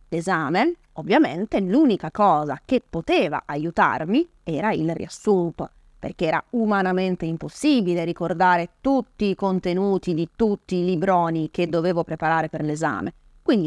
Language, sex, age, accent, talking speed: Italian, female, 30-49, native, 125 wpm